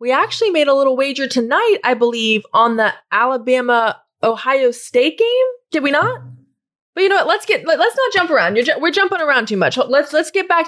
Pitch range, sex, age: 215-285 Hz, female, 20-39